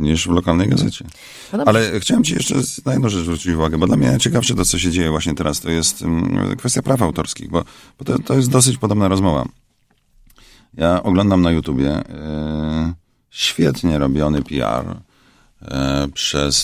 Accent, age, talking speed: native, 40-59, 160 wpm